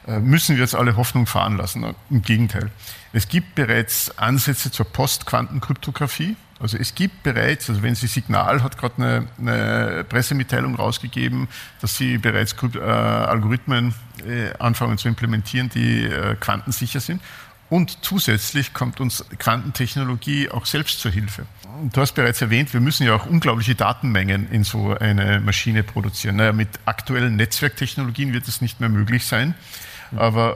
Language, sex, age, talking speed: German, male, 50-69, 145 wpm